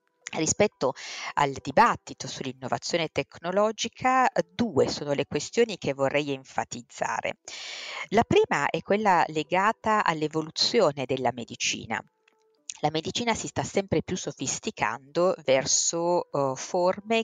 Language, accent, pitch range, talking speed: Italian, native, 135-195 Hz, 100 wpm